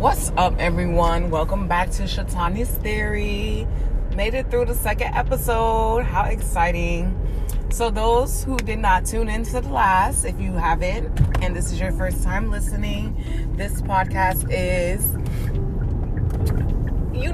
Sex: female